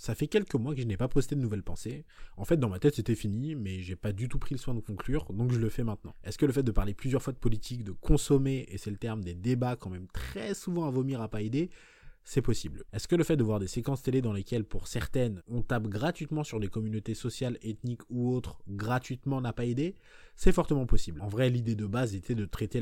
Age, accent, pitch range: 20-39, French, 105-130 Hz